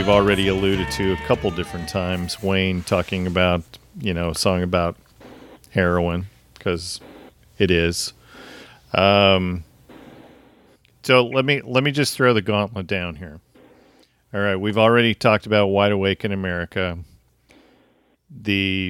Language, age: English, 40-59